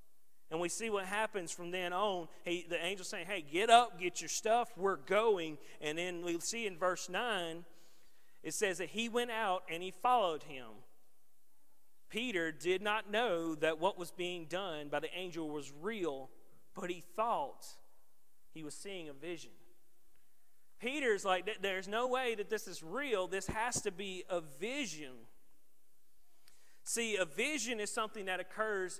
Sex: male